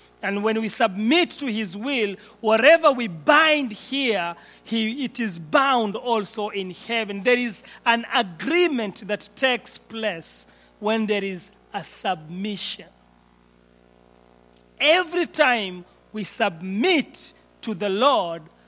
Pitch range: 160-245 Hz